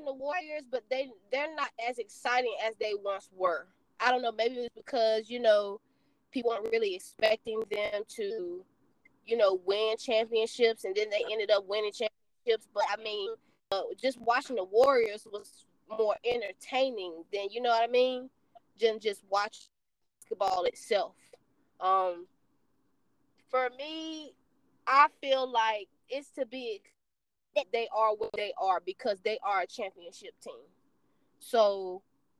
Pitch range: 210-275 Hz